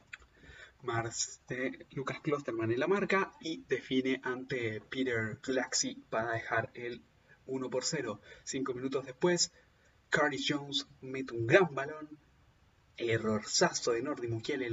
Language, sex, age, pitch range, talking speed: Spanish, male, 20-39, 115-140 Hz, 120 wpm